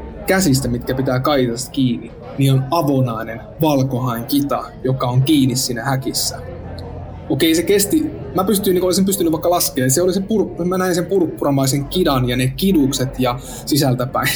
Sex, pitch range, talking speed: male, 125-145 Hz, 160 wpm